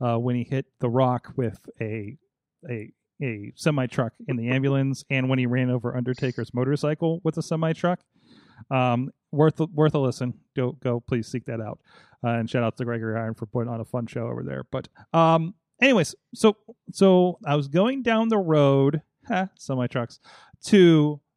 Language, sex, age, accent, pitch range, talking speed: English, male, 30-49, American, 135-180 Hz, 190 wpm